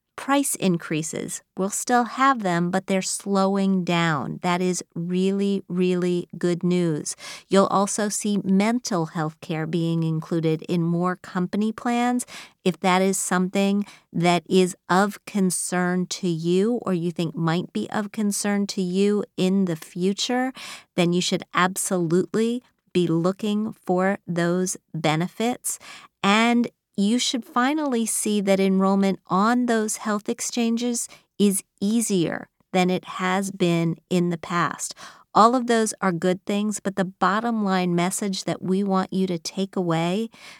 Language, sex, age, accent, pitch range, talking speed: English, female, 40-59, American, 175-200 Hz, 145 wpm